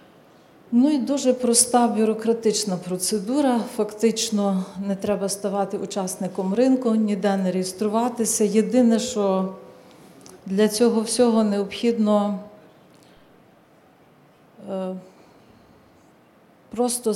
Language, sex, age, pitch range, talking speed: Ukrainian, female, 40-59, 195-230 Hz, 75 wpm